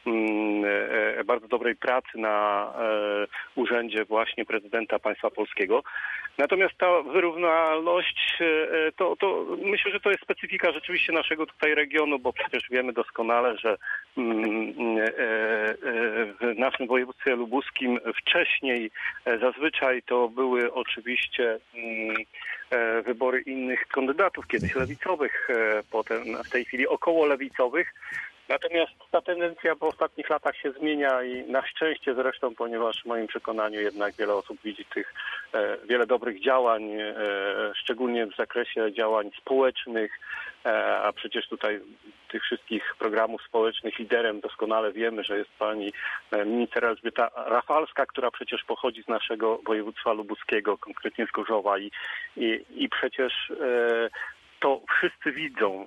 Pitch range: 115-155 Hz